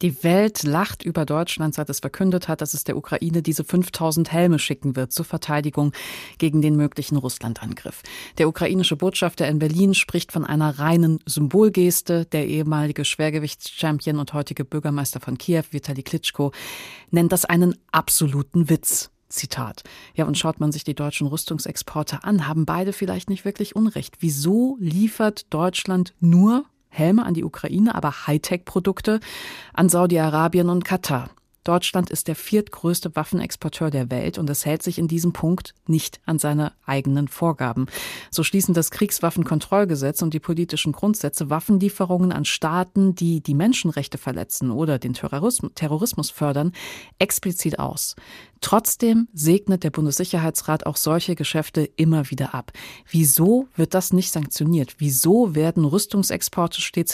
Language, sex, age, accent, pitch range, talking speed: German, female, 30-49, German, 150-180 Hz, 145 wpm